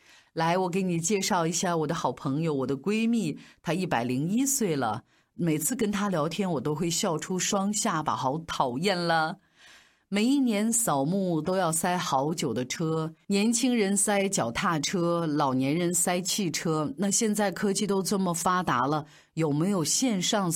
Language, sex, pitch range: Chinese, female, 160-225 Hz